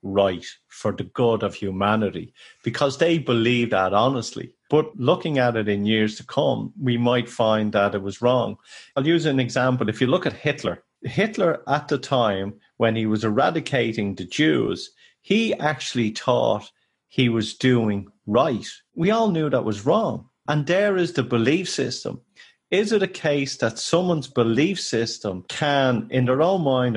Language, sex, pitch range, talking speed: English, male, 105-140 Hz, 170 wpm